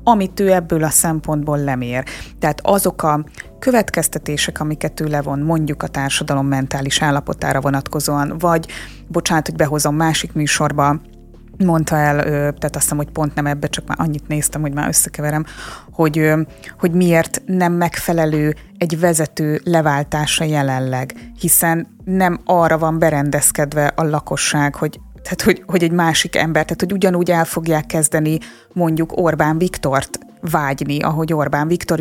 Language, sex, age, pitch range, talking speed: Hungarian, female, 20-39, 145-175 Hz, 145 wpm